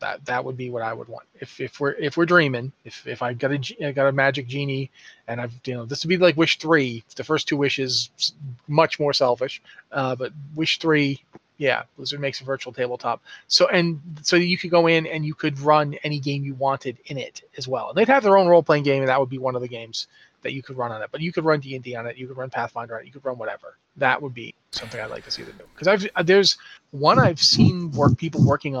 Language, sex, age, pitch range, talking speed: English, male, 30-49, 130-160 Hz, 270 wpm